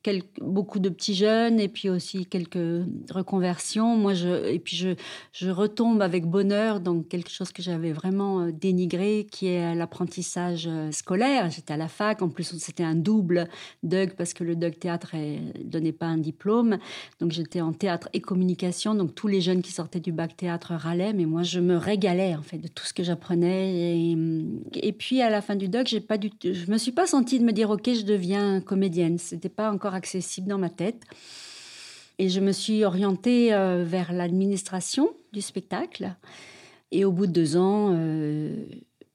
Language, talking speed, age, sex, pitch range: French, 190 wpm, 40-59, female, 170-200 Hz